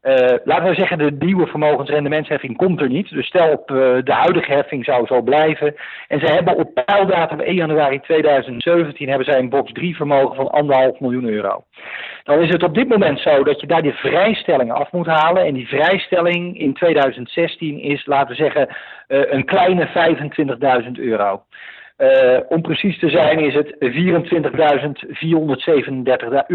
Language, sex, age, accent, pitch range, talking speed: Dutch, male, 50-69, Dutch, 135-170 Hz, 170 wpm